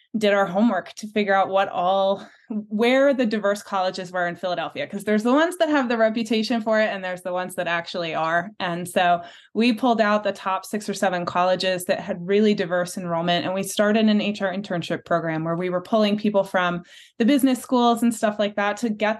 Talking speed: 220 wpm